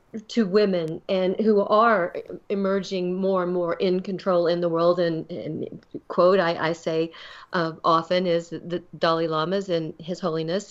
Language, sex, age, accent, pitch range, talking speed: English, female, 40-59, American, 170-195 Hz, 165 wpm